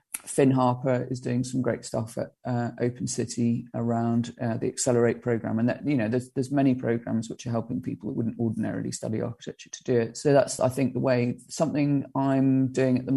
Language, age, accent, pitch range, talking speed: English, 40-59, British, 115-130 Hz, 215 wpm